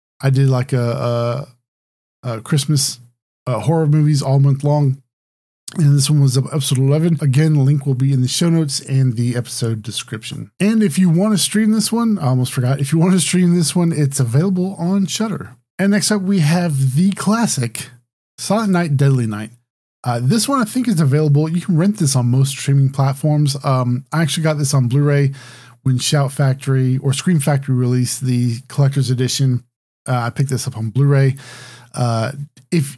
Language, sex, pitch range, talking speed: English, male, 125-155 Hz, 195 wpm